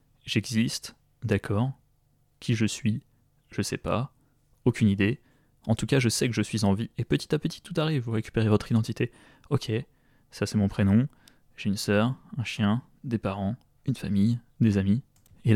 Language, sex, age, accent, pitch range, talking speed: French, male, 20-39, French, 105-130 Hz, 180 wpm